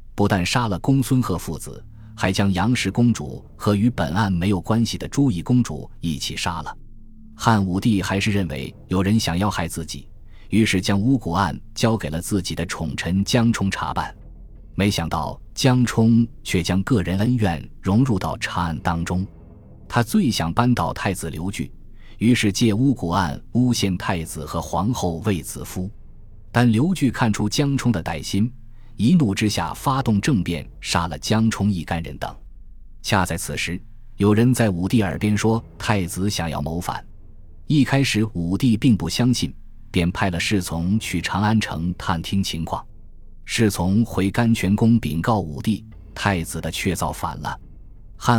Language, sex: Chinese, male